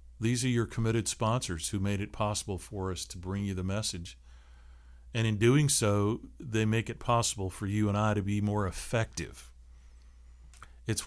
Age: 50-69